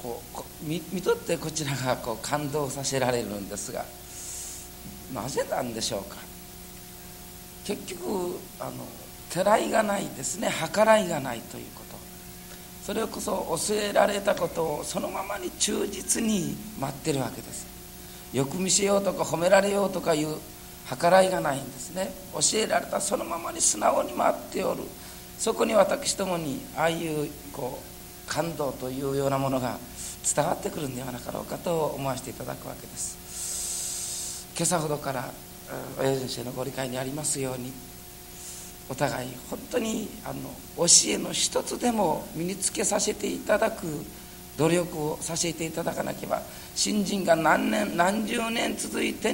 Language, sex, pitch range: Japanese, male, 125-195 Hz